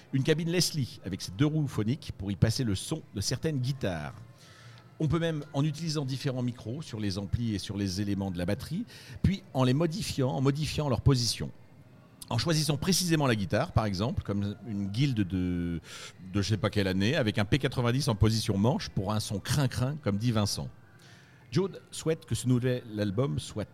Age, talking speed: 50-69, 200 wpm